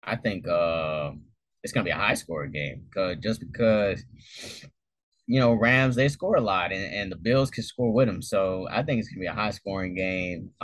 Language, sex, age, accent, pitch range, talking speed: English, male, 20-39, American, 95-120 Hz, 215 wpm